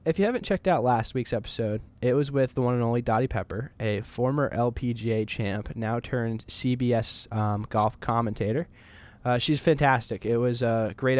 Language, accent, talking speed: English, American, 180 wpm